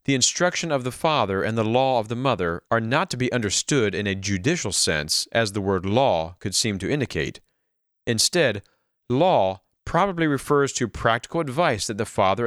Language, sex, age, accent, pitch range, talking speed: English, male, 40-59, American, 100-145 Hz, 185 wpm